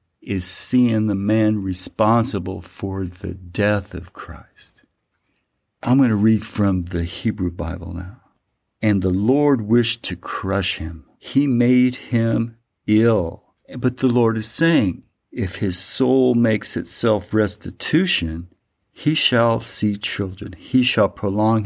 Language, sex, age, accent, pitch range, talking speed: English, male, 50-69, American, 95-115 Hz, 135 wpm